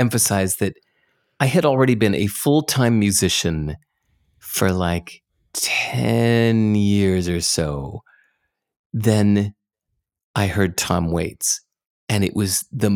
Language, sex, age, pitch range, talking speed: English, male, 30-49, 95-135 Hz, 110 wpm